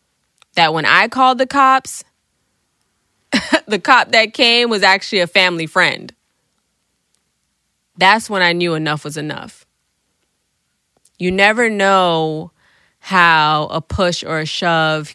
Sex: female